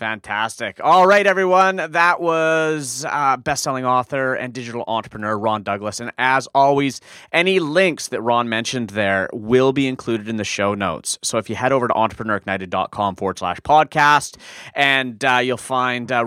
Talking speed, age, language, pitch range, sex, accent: 170 wpm, 30-49, English, 105-150 Hz, male, American